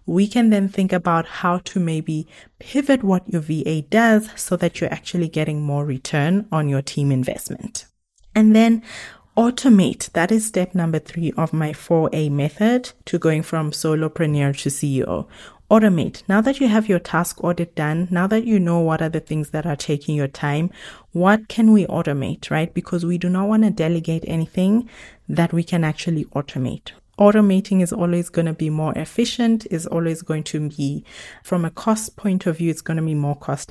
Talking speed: 190 wpm